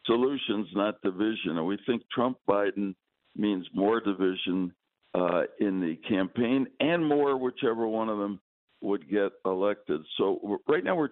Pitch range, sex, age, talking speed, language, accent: 100-120 Hz, male, 60-79, 145 wpm, English, American